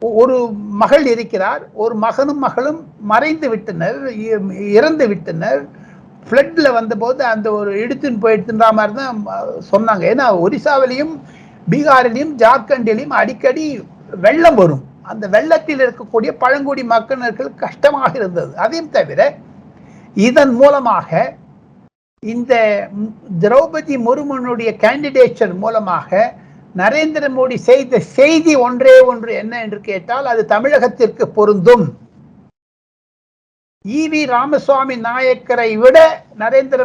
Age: 60-79